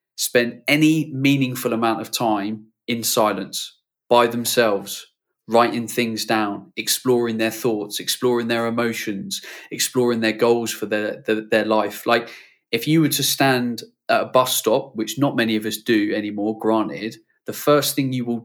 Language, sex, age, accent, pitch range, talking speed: English, male, 20-39, British, 110-130 Hz, 160 wpm